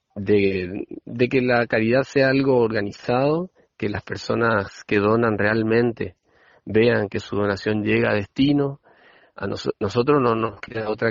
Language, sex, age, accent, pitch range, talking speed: Spanish, male, 40-59, Argentinian, 100-125 Hz, 150 wpm